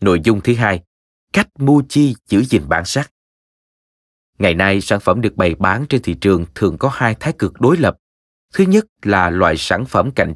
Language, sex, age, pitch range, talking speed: Vietnamese, male, 20-39, 90-135 Hz, 205 wpm